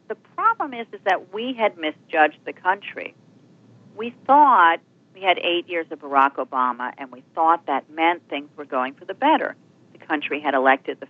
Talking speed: 190 wpm